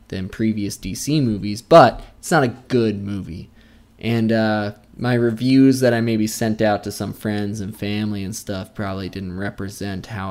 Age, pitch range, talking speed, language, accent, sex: 20-39, 105-130 Hz, 175 wpm, English, American, male